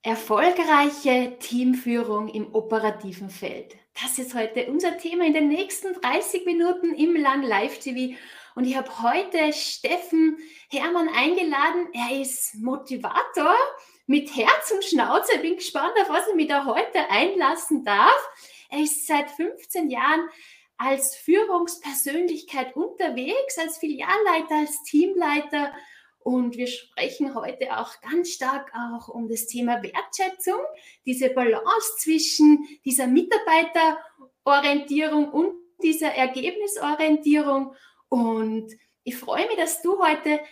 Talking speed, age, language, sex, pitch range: 125 wpm, 20-39, German, female, 255-340 Hz